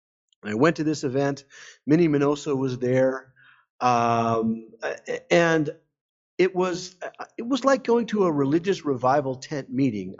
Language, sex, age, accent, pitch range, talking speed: English, male, 50-69, American, 125-165 Hz, 135 wpm